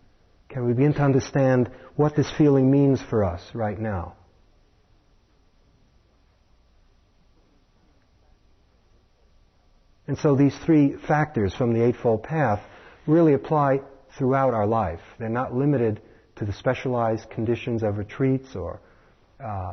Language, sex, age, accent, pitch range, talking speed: English, male, 40-59, American, 105-140 Hz, 115 wpm